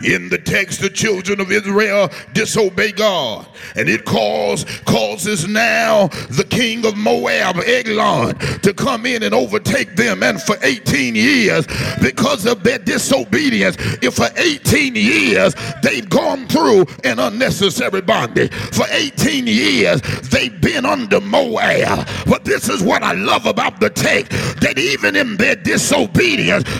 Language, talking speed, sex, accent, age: English, 140 wpm, male, American, 50-69